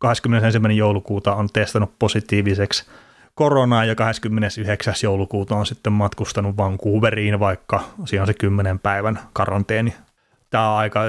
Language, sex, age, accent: Finnish, male, 30-49, native